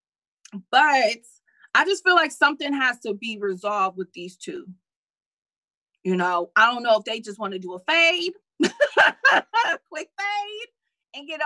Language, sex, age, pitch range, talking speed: English, female, 20-39, 200-305 Hz, 155 wpm